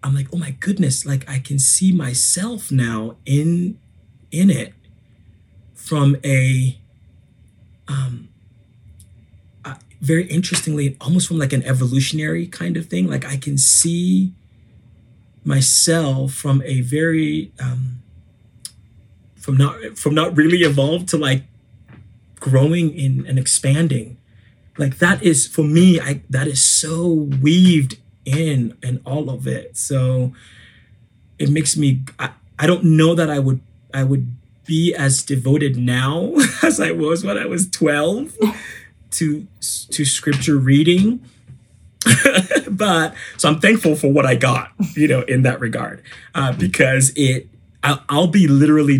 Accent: American